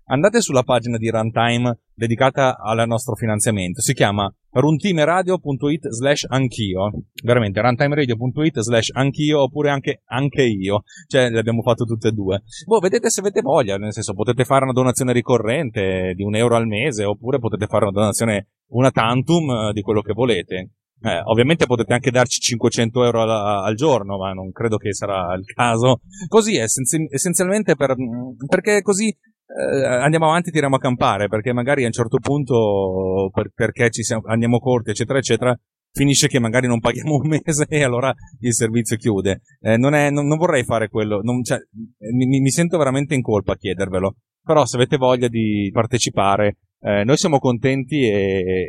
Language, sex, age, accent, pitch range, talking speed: Italian, male, 30-49, native, 105-135 Hz, 175 wpm